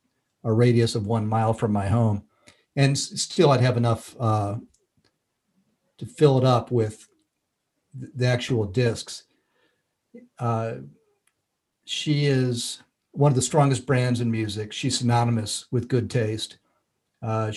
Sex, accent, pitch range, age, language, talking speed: male, American, 110-130 Hz, 50-69, English, 130 wpm